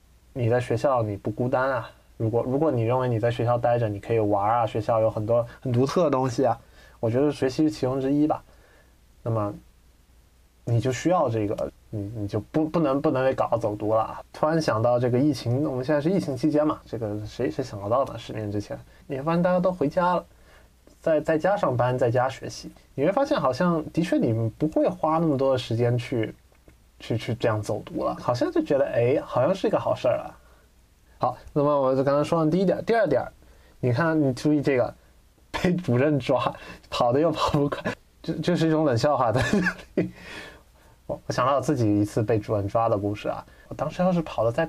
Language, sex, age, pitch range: Chinese, male, 20-39, 110-150 Hz